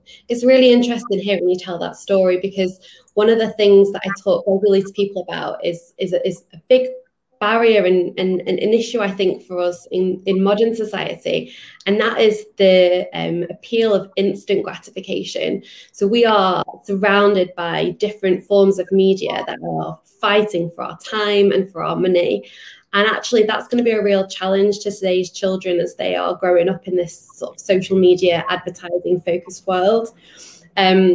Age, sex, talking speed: 20-39, female, 180 wpm